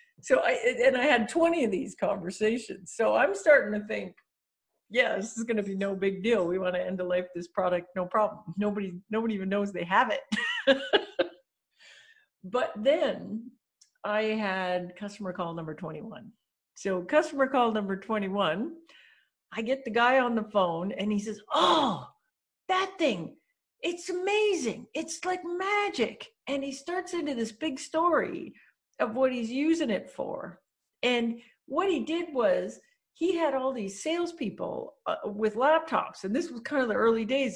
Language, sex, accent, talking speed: English, female, American, 165 wpm